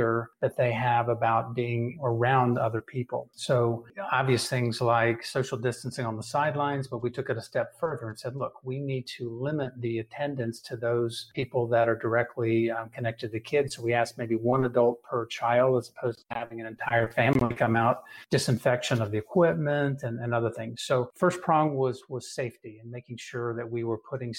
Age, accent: 50-69, American